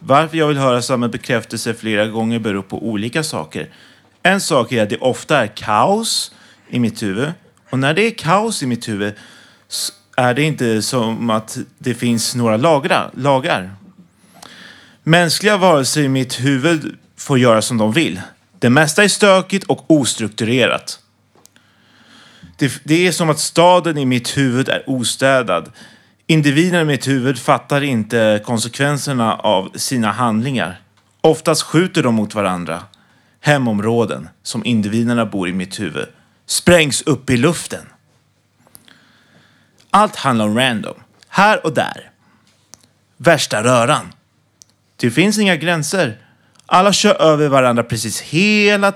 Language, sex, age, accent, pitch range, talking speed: Swedish, male, 30-49, native, 115-155 Hz, 135 wpm